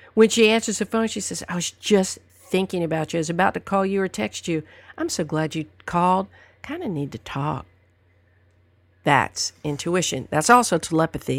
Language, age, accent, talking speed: English, 50-69, American, 195 wpm